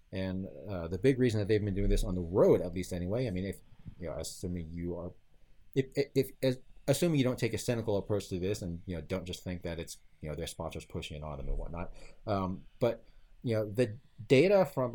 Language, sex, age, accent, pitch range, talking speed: English, male, 40-59, American, 85-115 Hz, 250 wpm